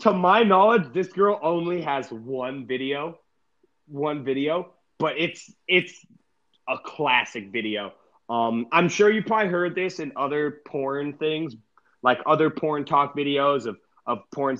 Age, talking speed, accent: 30-49, 150 wpm, American